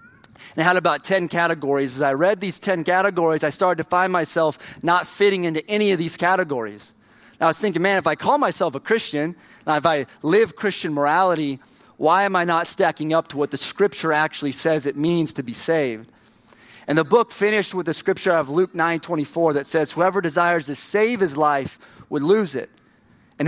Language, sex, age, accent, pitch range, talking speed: English, male, 30-49, American, 150-190 Hz, 200 wpm